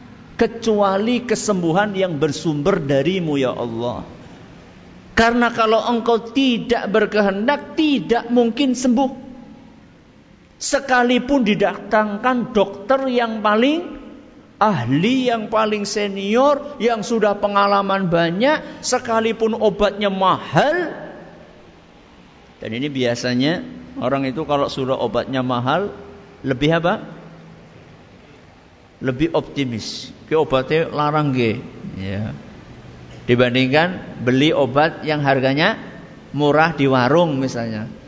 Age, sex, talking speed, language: 50-69, male, 90 wpm, Malay